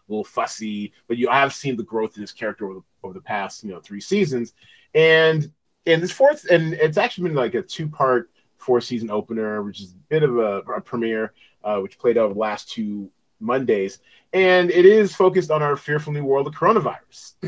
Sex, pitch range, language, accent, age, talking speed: male, 105-135 Hz, English, American, 30-49, 205 wpm